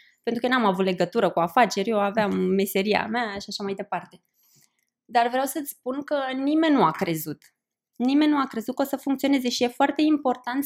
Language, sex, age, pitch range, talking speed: Romanian, female, 20-39, 220-305 Hz, 205 wpm